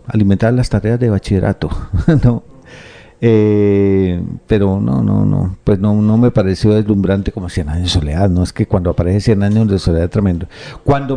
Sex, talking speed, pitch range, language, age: male, 175 wpm, 95-120 Hz, Spanish, 50-69